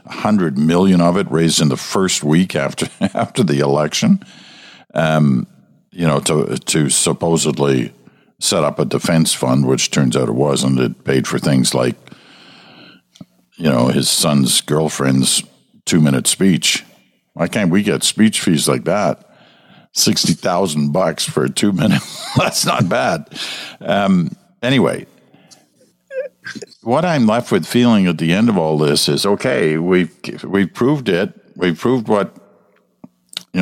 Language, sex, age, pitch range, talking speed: English, male, 60-79, 75-100 Hz, 150 wpm